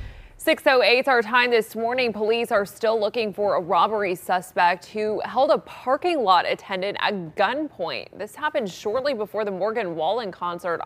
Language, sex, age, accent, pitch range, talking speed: English, female, 20-39, American, 175-210 Hz, 160 wpm